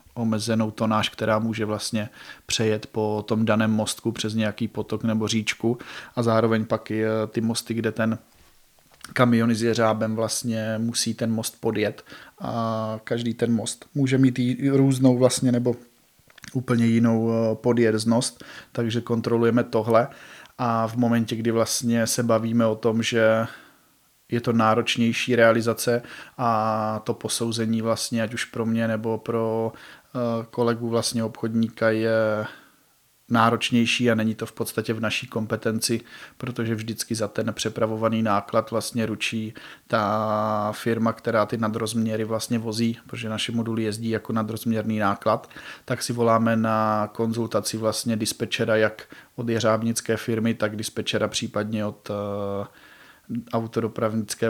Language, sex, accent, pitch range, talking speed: Czech, male, native, 110-115 Hz, 130 wpm